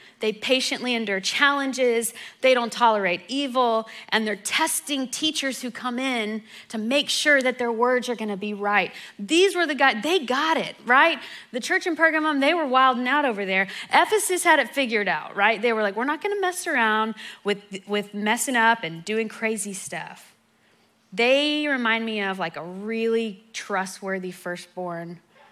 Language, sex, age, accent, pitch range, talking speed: English, female, 20-39, American, 195-255 Hz, 175 wpm